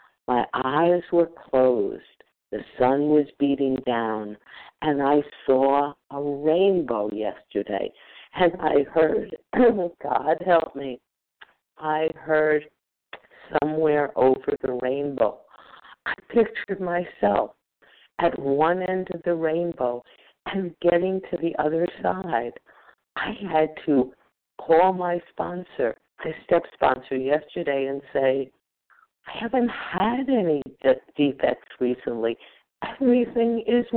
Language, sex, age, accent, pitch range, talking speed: English, female, 50-69, American, 135-175 Hz, 110 wpm